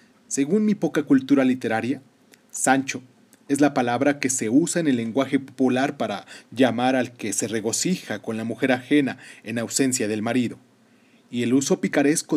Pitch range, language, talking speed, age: 130-165 Hz, Spanish, 165 wpm, 40-59